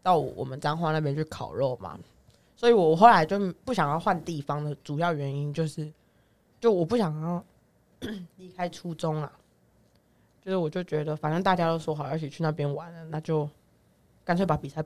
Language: Chinese